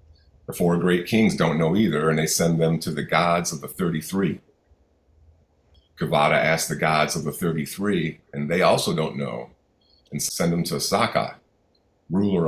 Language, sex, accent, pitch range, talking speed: English, male, American, 75-85 Hz, 170 wpm